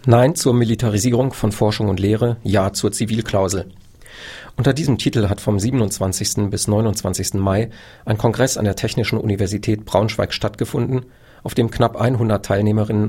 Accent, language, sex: German, German, male